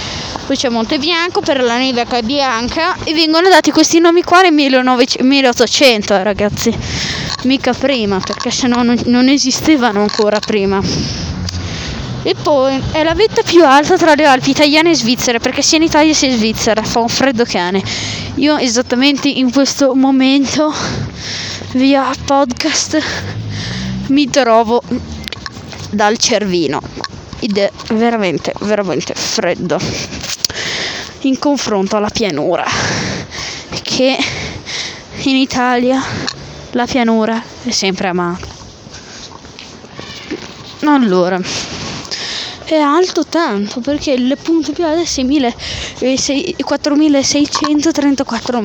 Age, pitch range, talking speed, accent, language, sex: 20-39, 225-295 Hz, 110 wpm, native, Italian, female